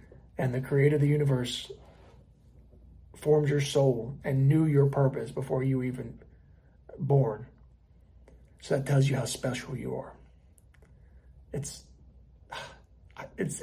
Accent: American